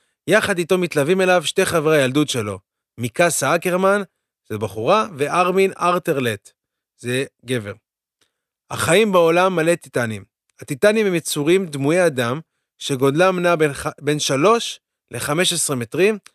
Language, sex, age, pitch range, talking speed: Hebrew, male, 30-49, 140-185 Hz, 120 wpm